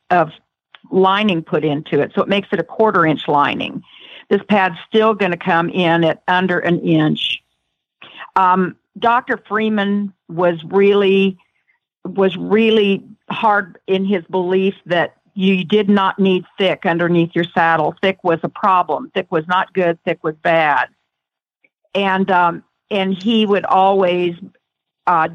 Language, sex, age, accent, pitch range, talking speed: English, female, 50-69, American, 175-205 Hz, 145 wpm